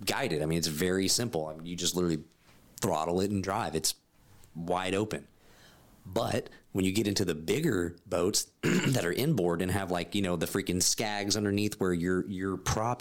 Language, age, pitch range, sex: English, 30-49, 90-120 Hz, male